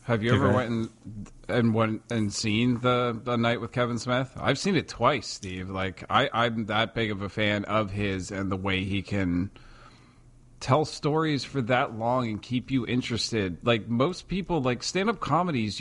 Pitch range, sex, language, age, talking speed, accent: 105-125 Hz, male, English, 30-49, 195 wpm, American